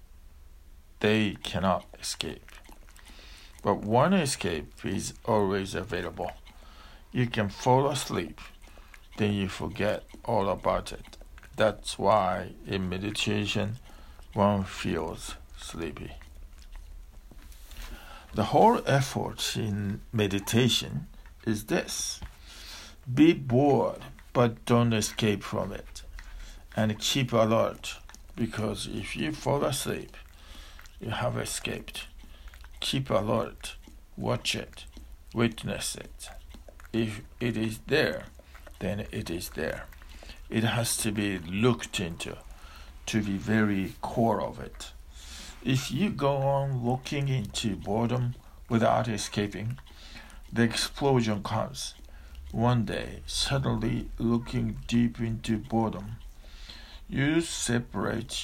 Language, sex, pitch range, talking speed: English, male, 75-115 Hz, 100 wpm